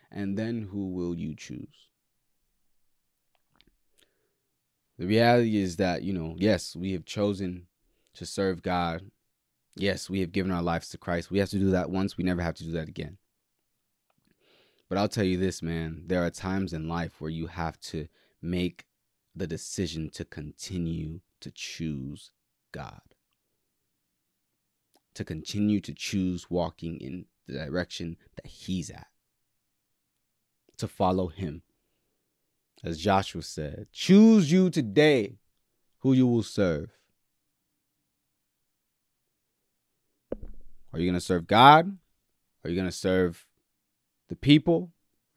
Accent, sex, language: American, male, English